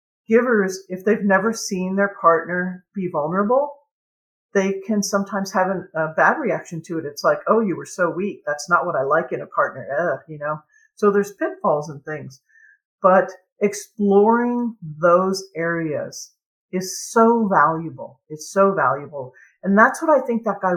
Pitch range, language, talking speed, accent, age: 160-205 Hz, English, 170 wpm, American, 50-69